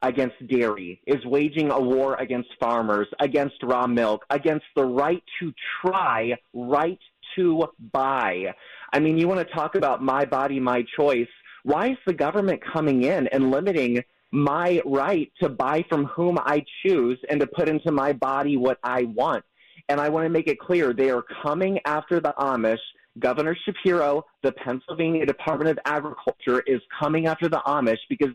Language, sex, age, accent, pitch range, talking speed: English, male, 30-49, American, 130-170 Hz, 170 wpm